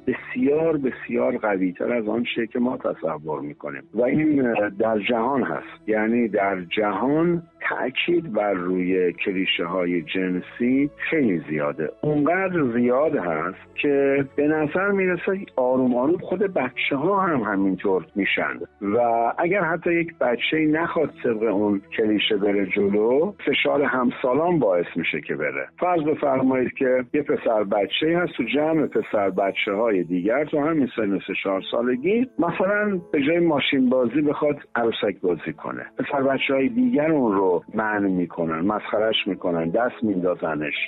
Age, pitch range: 50-69, 95-150 Hz